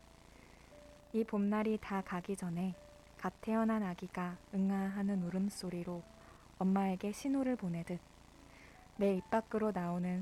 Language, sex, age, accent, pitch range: Korean, female, 20-39, native, 180-210 Hz